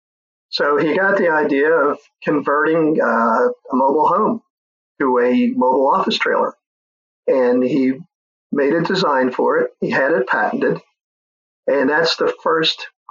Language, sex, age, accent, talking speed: English, male, 50-69, American, 140 wpm